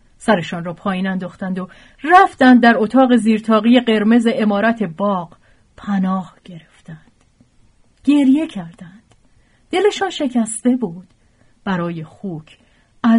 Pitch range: 175-245 Hz